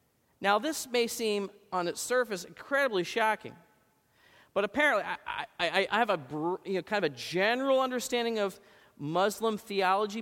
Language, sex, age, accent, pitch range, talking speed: English, male, 40-59, American, 180-230 Hz, 155 wpm